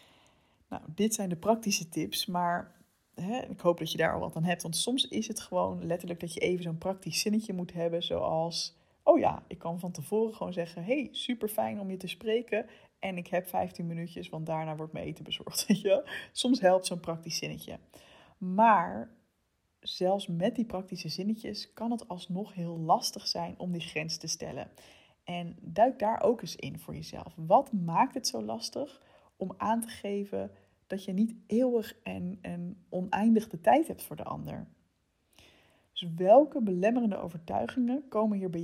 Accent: Dutch